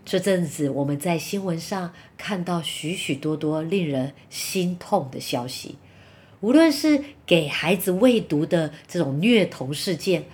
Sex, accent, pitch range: female, American, 155-240 Hz